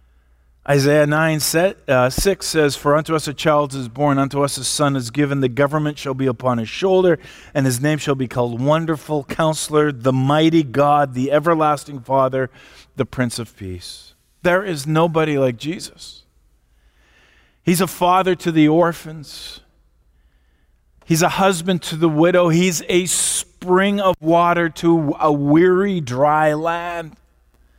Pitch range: 145-190 Hz